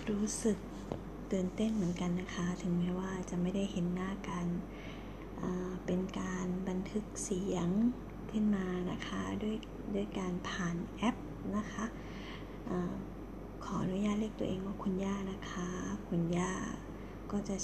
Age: 20-39